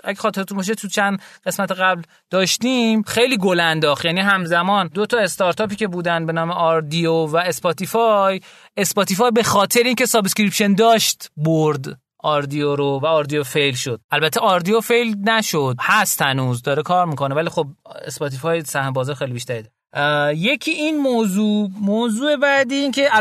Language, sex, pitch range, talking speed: Persian, male, 155-220 Hz, 145 wpm